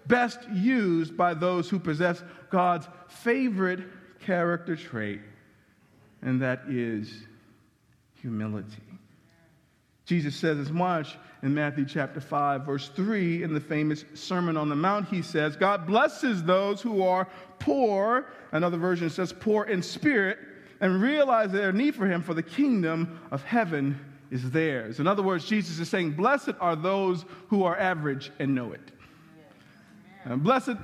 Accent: American